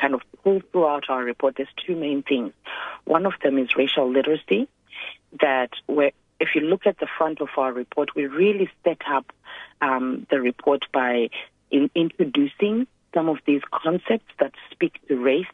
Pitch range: 130-160 Hz